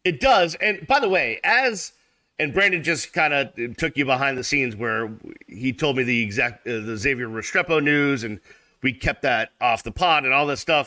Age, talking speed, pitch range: 40-59, 215 wpm, 135-165 Hz